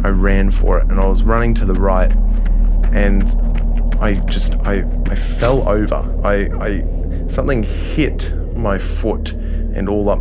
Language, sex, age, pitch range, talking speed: English, male, 20-39, 90-105 Hz, 160 wpm